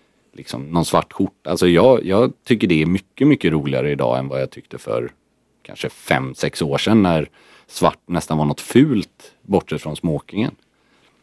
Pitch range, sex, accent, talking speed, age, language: 85-110 Hz, male, native, 165 wpm, 40-59, Swedish